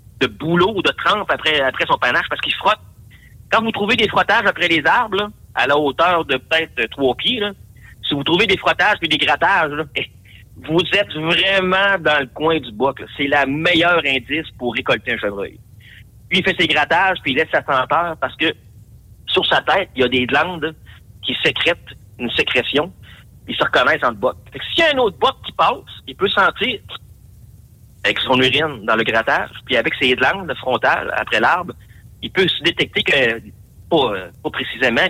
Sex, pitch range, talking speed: male, 115-170 Hz, 200 wpm